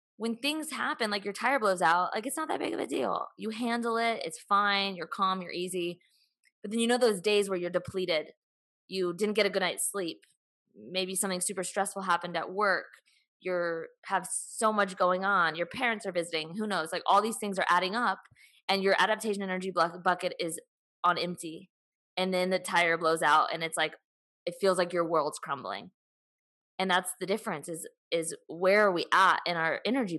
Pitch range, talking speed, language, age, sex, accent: 175-210 Hz, 205 wpm, English, 20-39, female, American